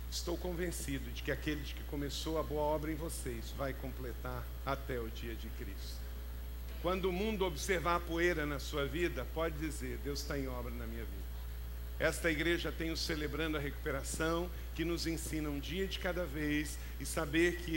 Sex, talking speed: male, 180 wpm